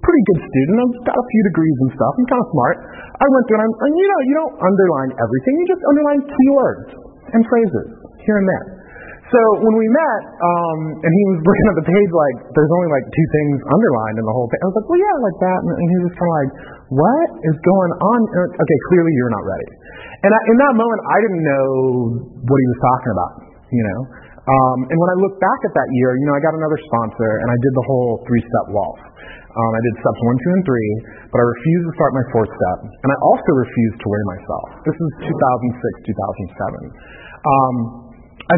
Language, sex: English, male